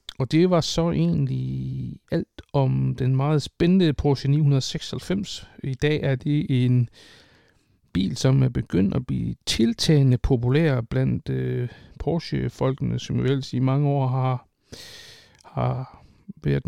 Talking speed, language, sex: 130 wpm, English, male